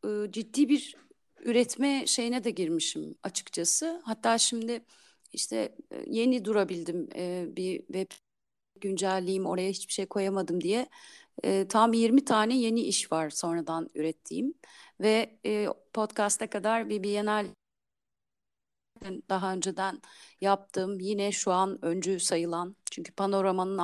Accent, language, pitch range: native, Turkish, 175-215 Hz